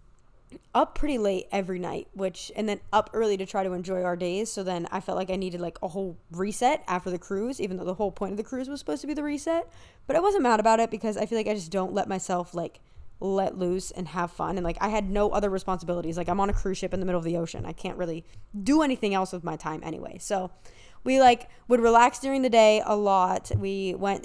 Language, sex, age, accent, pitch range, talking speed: English, female, 20-39, American, 185-230 Hz, 260 wpm